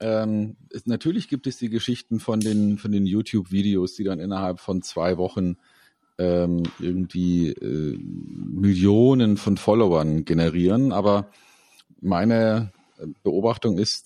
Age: 40-59